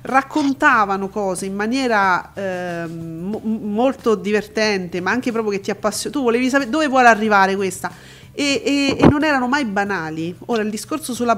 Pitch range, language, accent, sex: 200-255 Hz, Italian, native, female